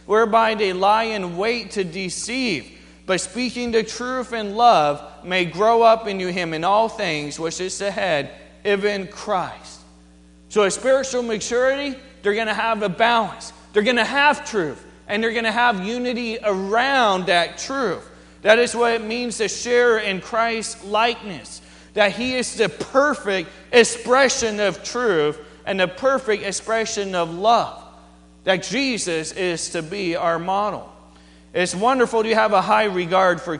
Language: English